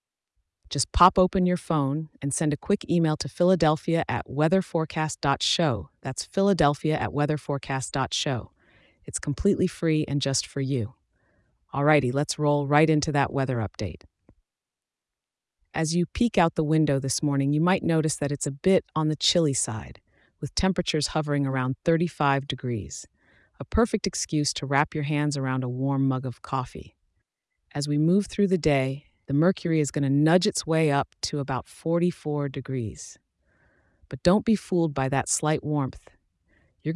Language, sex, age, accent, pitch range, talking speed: English, female, 30-49, American, 135-165 Hz, 160 wpm